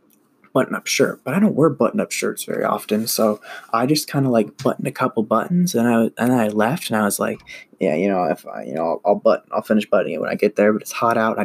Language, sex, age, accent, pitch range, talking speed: English, male, 10-29, American, 115-185 Hz, 280 wpm